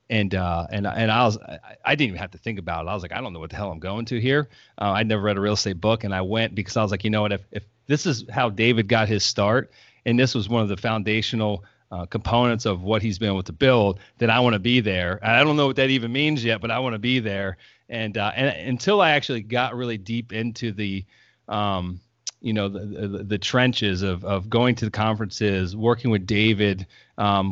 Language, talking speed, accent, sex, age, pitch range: English, 260 wpm, American, male, 30-49, 100-125 Hz